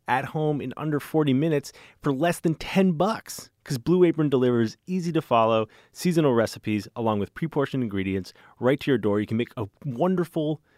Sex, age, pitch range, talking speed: male, 30-49, 110-160 Hz, 175 wpm